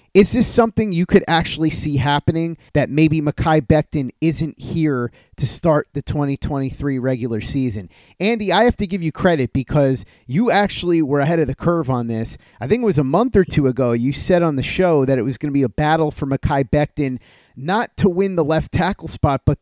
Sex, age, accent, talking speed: male, 30-49, American, 215 wpm